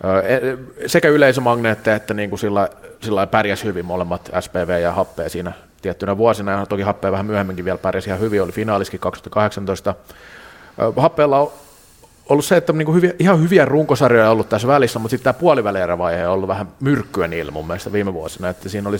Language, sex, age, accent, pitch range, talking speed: Finnish, male, 30-49, native, 95-120 Hz, 175 wpm